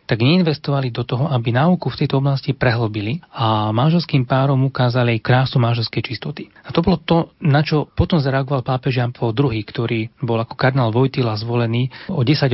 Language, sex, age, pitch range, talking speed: Slovak, male, 30-49, 120-145 Hz, 175 wpm